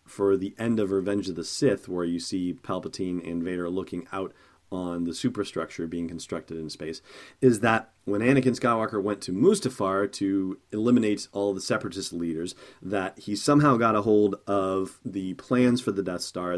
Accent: American